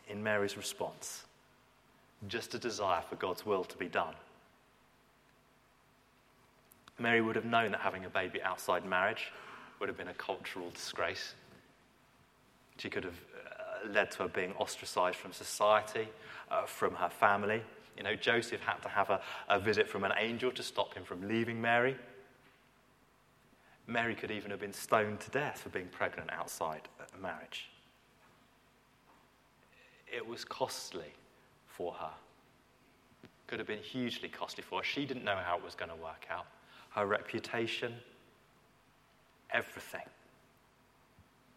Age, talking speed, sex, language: 30-49, 145 wpm, male, English